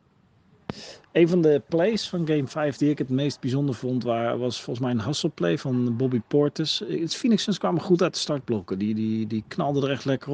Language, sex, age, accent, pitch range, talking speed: Dutch, male, 40-59, Dutch, 105-135 Hz, 215 wpm